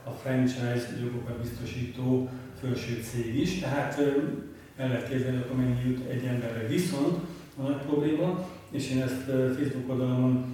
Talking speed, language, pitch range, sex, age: 135 wpm, Hungarian, 125-140 Hz, male, 40-59